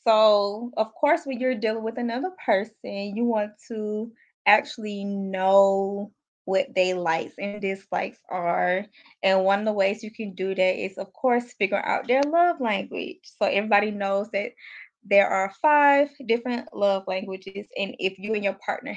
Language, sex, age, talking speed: English, female, 20-39, 170 wpm